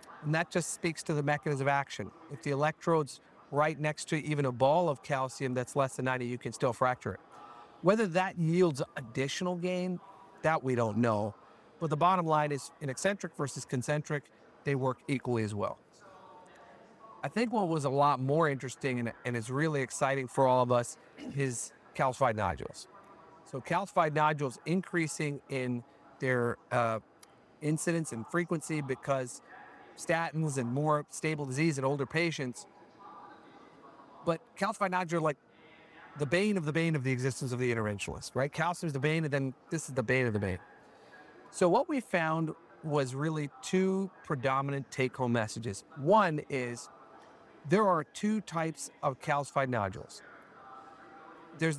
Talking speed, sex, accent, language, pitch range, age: 160 wpm, male, American, English, 130-165 Hz, 40-59